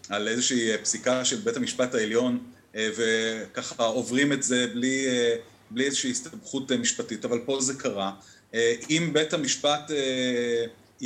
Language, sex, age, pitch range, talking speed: Hebrew, male, 30-49, 125-185 Hz, 150 wpm